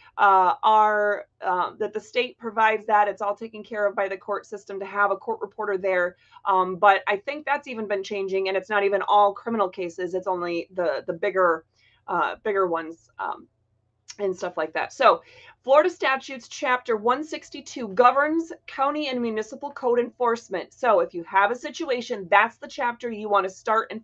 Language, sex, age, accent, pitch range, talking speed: English, female, 30-49, American, 195-245 Hz, 200 wpm